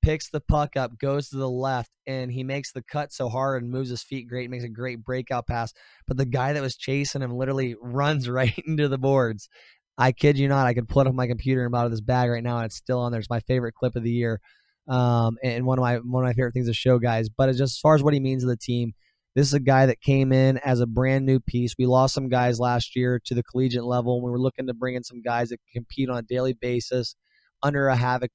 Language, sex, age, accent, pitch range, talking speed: English, male, 20-39, American, 120-130 Hz, 285 wpm